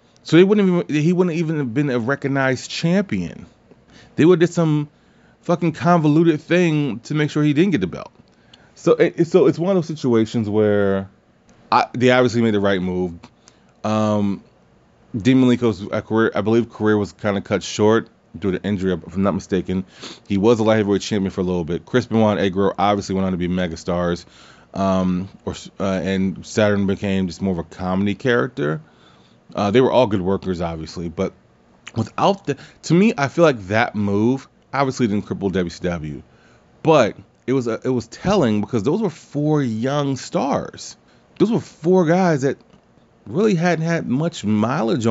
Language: English